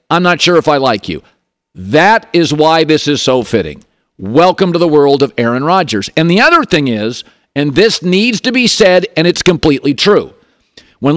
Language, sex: English, male